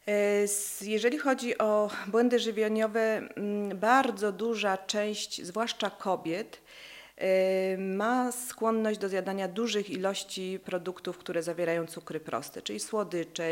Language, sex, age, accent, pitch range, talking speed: Polish, female, 40-59, native, 185-215 Hz, 100 wpm